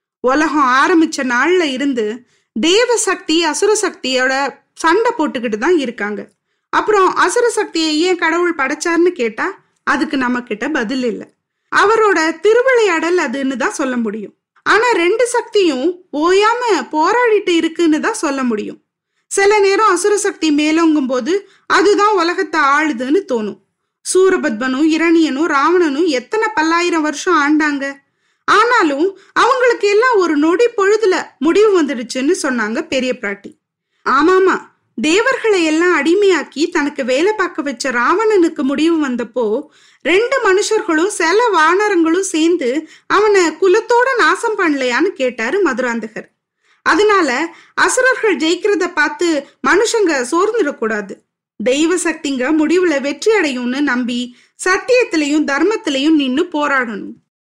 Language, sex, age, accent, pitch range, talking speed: Tamil, female, 20-39, native, 280-390 Hz, 110 wpm